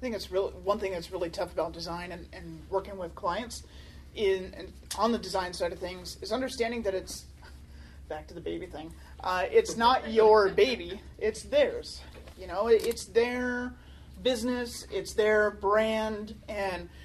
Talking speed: 175 wpm